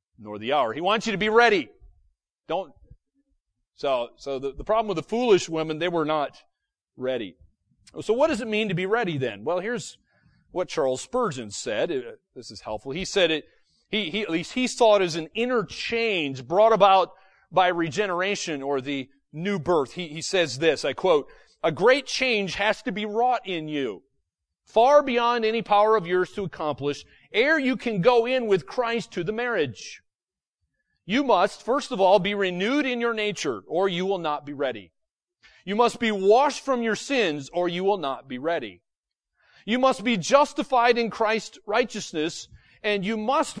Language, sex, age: English, male, 40-59